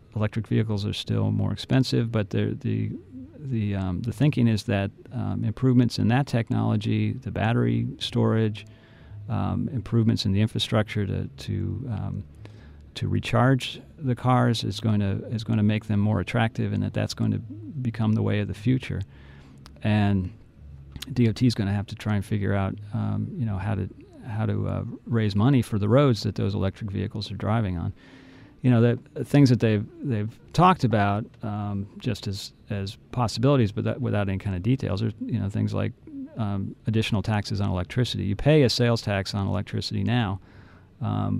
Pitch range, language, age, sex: 100-115 Hz, English, 40-59, male